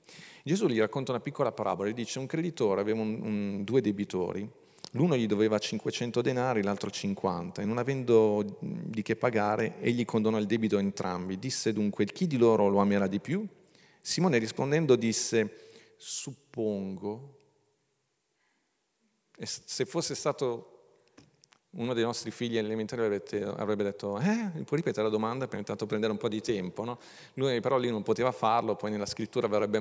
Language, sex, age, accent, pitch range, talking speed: Italian, male, 40-59, native, 105-140 Hz, 155 wpm